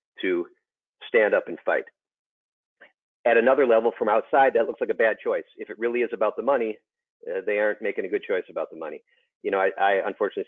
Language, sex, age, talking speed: English, male, 40-59, 220 wpm